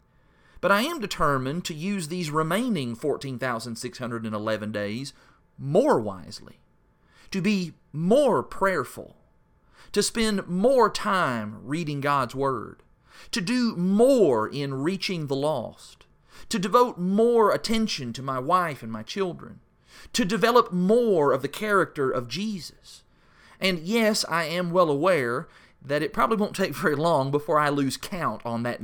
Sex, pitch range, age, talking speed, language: male, 125-185 Hz, 40-59, 140 wpm, English